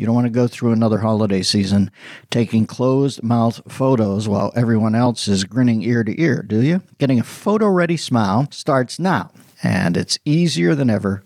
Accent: American